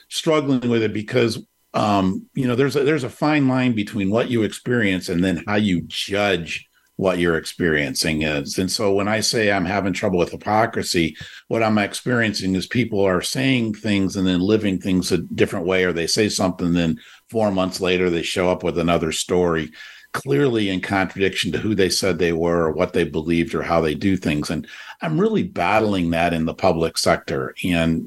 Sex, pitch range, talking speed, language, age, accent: male, 90-115 Hz, 200 wpm, English, 50-69, American